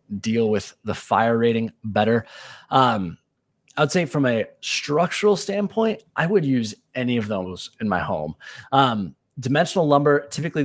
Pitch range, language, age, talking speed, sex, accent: 110-140 Hz, English, 20-39, 150 wpm, male, American